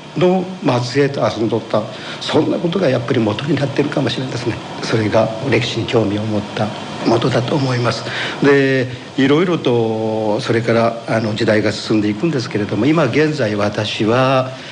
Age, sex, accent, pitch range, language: 50-69, male, native, 110-150 Hz, Japanese